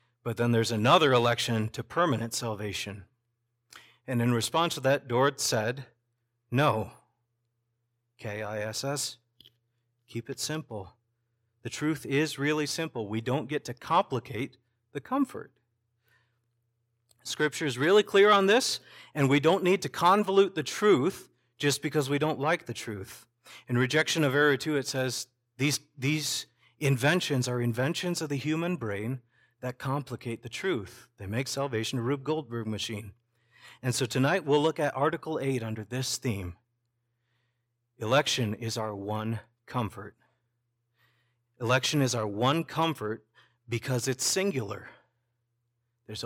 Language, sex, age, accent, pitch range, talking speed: English, male, 40-59, American, 115-140 Hz, 135 wpm